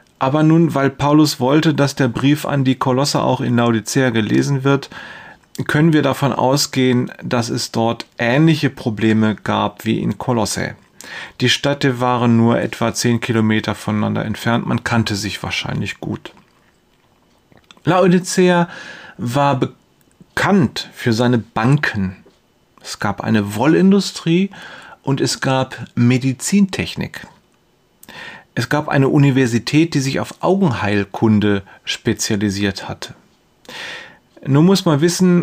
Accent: German